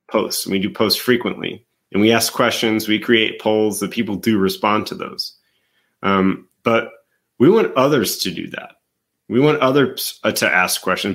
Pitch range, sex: 95-115 Hz, male